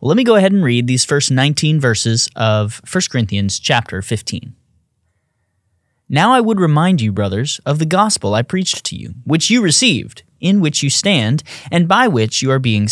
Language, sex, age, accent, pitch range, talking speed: English, male, 20-39, American, 115-185 Hz, 190 wpm